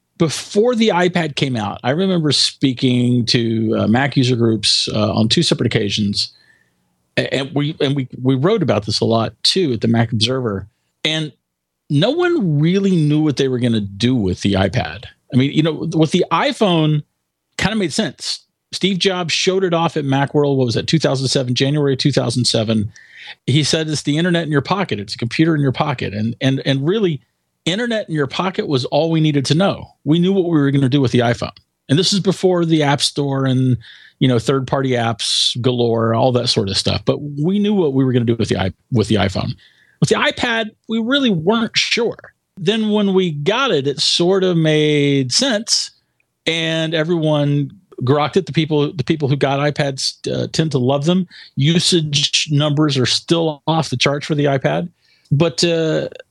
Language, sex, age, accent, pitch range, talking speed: English, male, 40-59, American, 120-165 Hz, 200 wpm